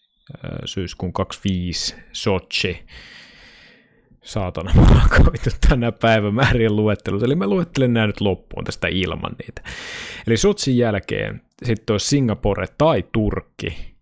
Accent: native